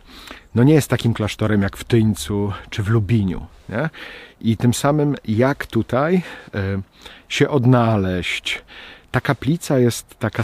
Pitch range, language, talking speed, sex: 100-120 Hz, Polish, 130 wpm, male